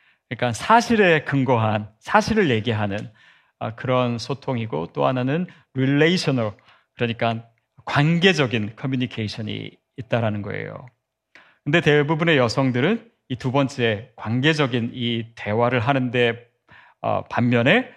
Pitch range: 115-145 Hz